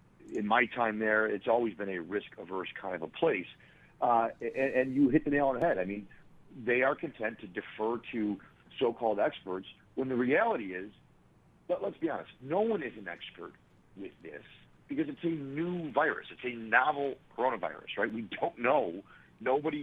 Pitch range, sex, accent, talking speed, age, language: 105-140 Hz, male, American, 190 wpm, 50-69, English